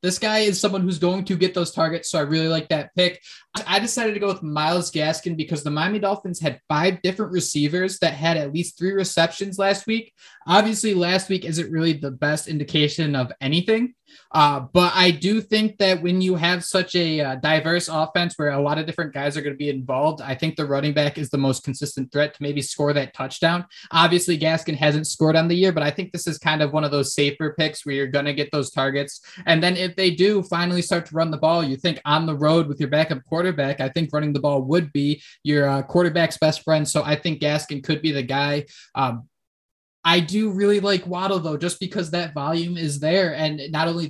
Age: 20-39